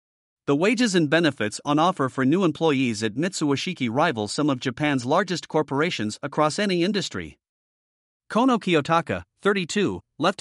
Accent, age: American, 50-69